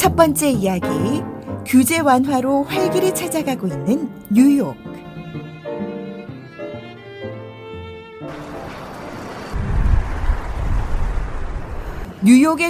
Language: Korean